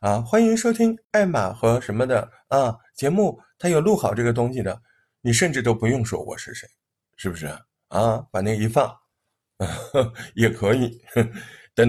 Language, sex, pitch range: Chinese, male, 105-140 Hz